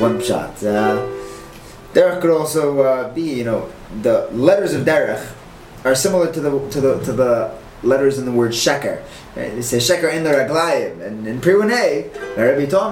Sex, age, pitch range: male, 20-39, 125-190 Hz